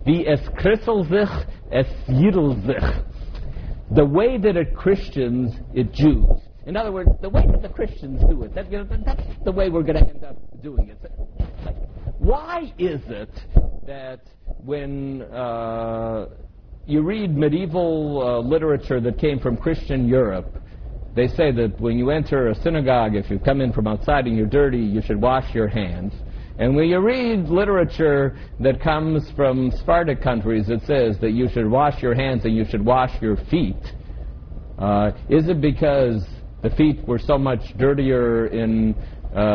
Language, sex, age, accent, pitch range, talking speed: English, male, 60-79, American, 115-160 Hz, 155 wpm